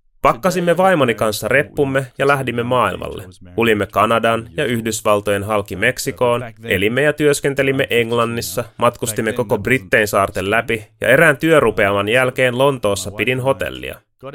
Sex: male